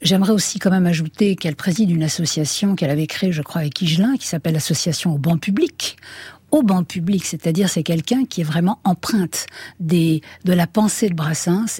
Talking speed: 195 wpm